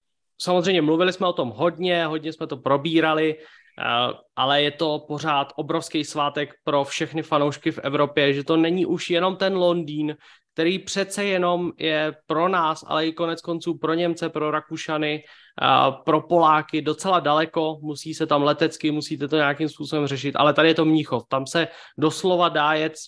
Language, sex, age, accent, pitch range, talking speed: Czech, male, 20-39, native, 145-160 Hz, 170 wpm